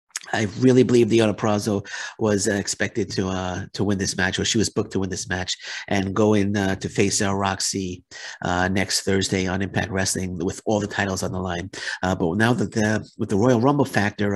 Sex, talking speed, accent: male, 215 wpm, American